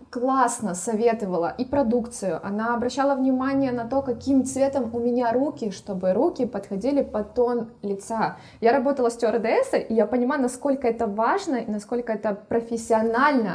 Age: 20-39